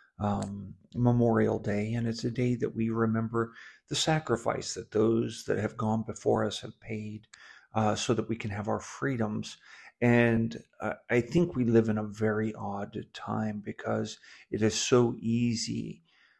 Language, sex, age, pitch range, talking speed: English, male, 50-69, 110-120 Hz, 165 wpm